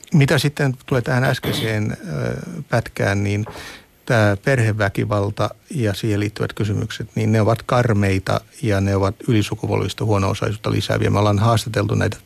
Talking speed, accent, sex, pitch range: 130 wpm, native, male, 105-120 Hz